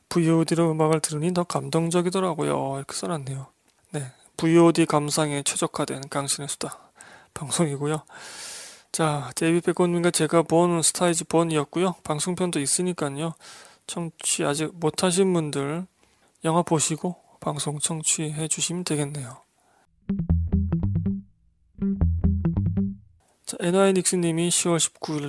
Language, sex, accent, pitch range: Korean, male, native, 145-175 Hz